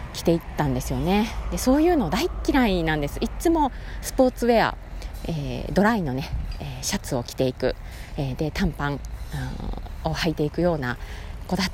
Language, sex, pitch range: Japanese, female, 130-210 Hz